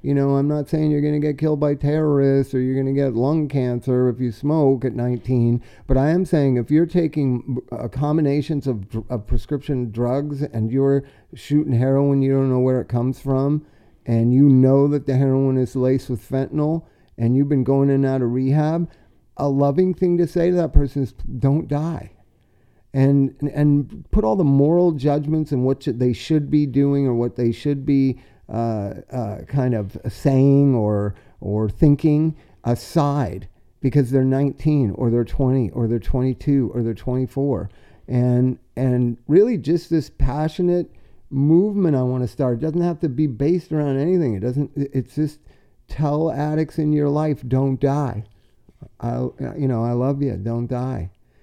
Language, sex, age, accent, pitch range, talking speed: English, male, 50-69, American, 125-145 Hz, 180 wpm